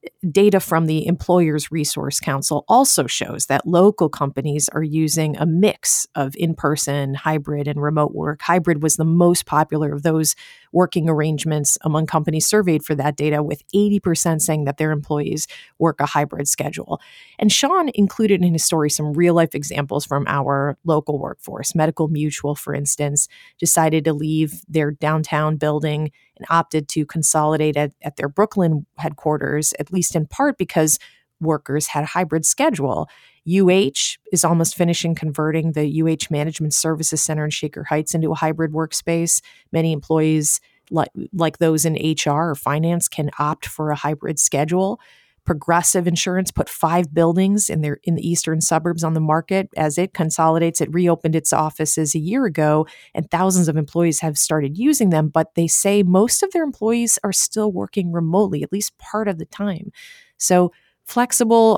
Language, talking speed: English, 165 wpm